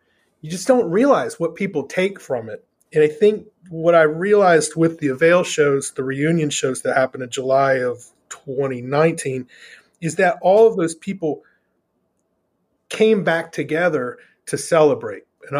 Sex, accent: male, American